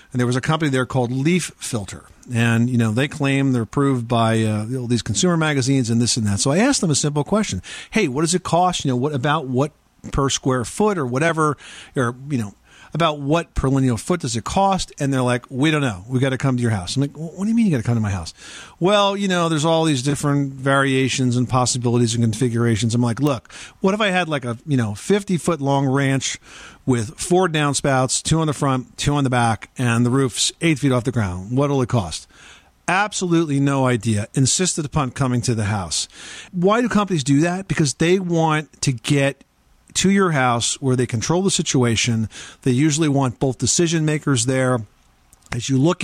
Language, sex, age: English, male, 50-69